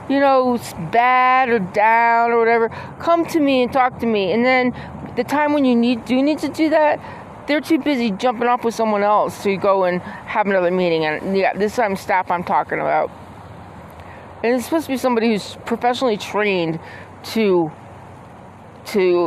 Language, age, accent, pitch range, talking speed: English, 30-49, American, 185-245 Hz, 190 wpm